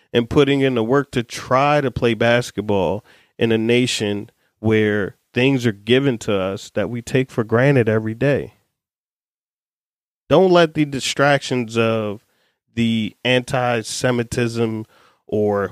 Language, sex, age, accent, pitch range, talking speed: English, male, 30-49, American, 110-135 Hz, 130 wpm